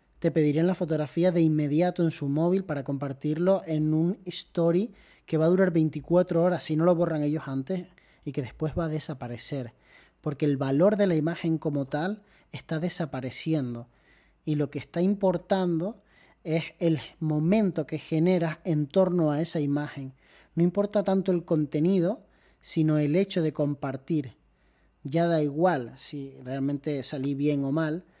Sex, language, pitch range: male, Spanish, 140-170 Hz